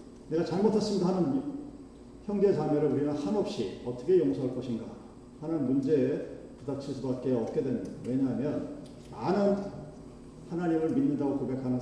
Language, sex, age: Korean, male, 40-59